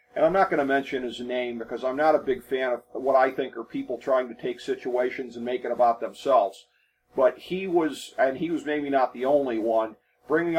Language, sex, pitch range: English, male, 130-170 Hz